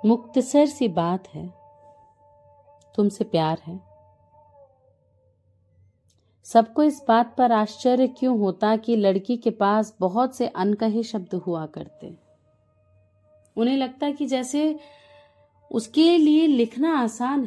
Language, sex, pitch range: Hindi, female, 165-270 Hz